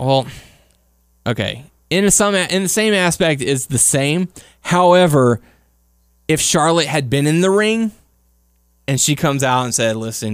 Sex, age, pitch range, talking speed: male, 20-39, 110-165 Hz, 145 wpm